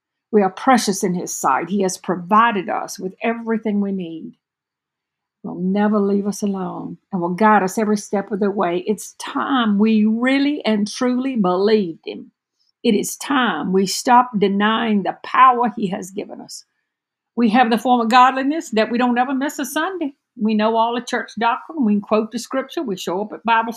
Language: English